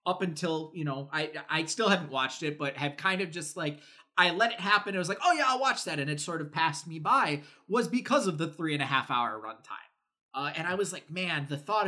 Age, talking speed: 20-39, 270 wpm